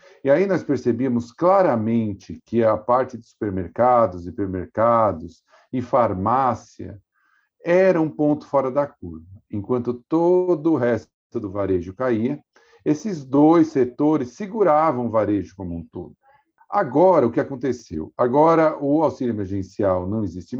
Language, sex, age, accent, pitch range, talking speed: Portuguese, male, 50-69, Brazilian, 110-165 Hz, 130 wpm